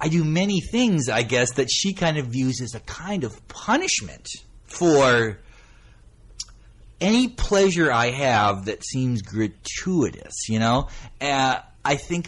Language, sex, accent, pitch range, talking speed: English, male, American, 95-140 Hz, 140 wpm